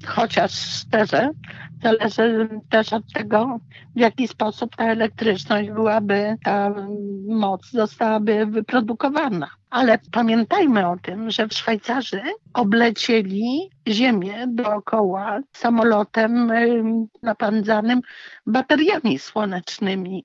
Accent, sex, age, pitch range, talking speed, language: native, female, 60-79, 210-255 Hz, 90 wpm, Polish